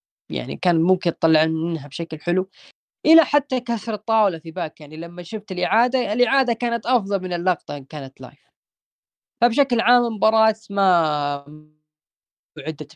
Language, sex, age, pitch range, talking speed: Arabic, female, 20-39, 150-175 Hz, 140 wpm